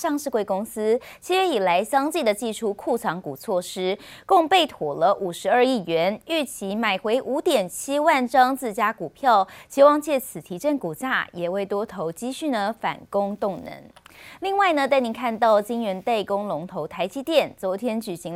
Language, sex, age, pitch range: Chinese, female, 20-39, 190-260 Hz